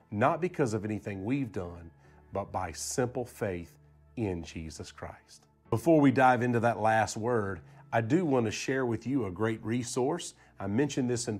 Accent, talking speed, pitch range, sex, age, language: American, 180 wpm, 105-130 Hz, male, 40-59, English